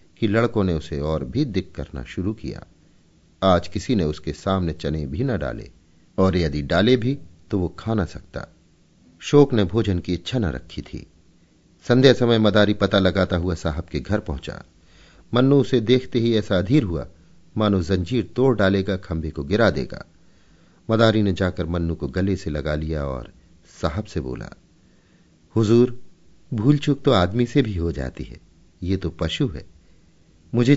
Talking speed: 170 wpm